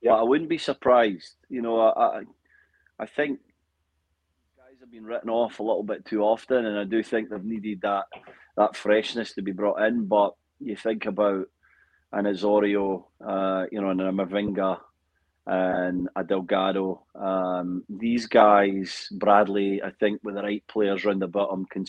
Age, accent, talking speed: 30-49, British, 175 wpm